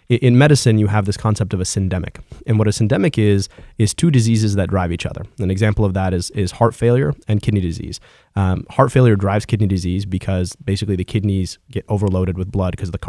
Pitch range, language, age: 95-115 Hz, English, 30-49